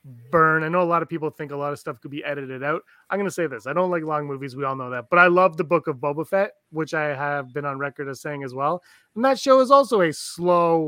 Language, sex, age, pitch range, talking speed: English, male, 20-39, 150-195 Hz, 300 wpm